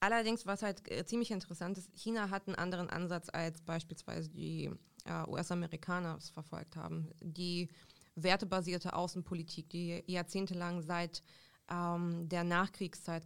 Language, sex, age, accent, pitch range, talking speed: German, female, 20-39, German, 170-195 Hz, 125 wpm